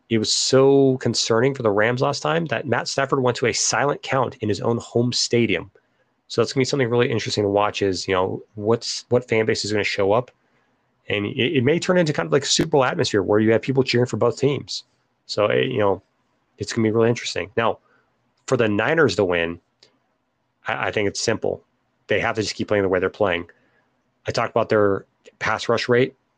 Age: 30-49